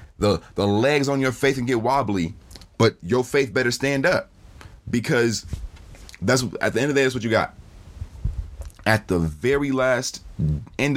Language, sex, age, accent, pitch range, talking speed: English, male, 30-49, American, 90-125 Hz, 175 wpm